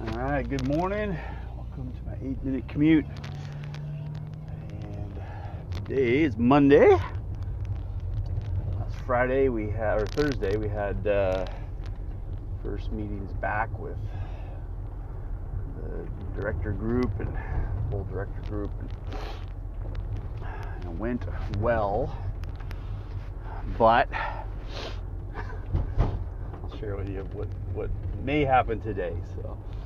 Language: English